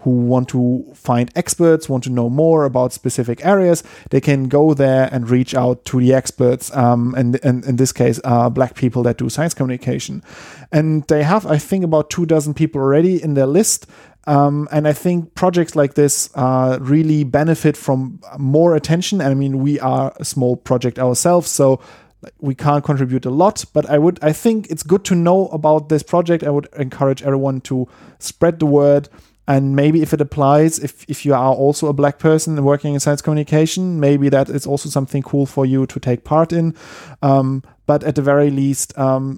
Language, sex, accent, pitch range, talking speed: English, male, German, 125-155 Hz, 200 wpm